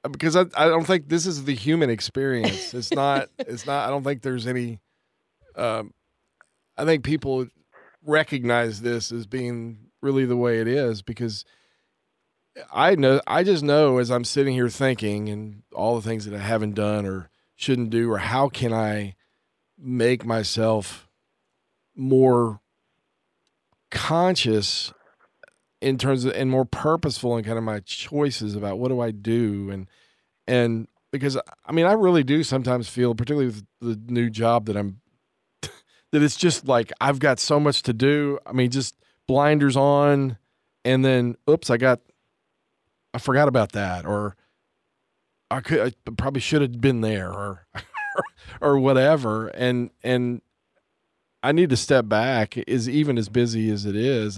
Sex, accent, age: male, American, 40-59